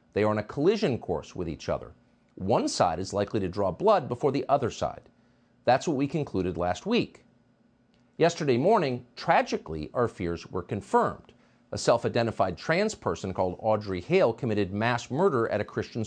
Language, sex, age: English, male, 50-69